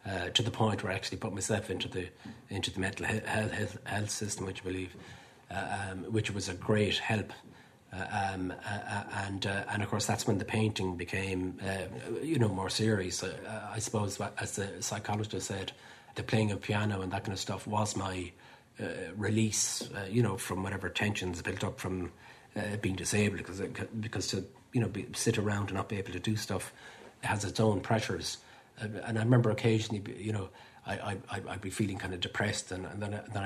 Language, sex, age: English, male, 30-49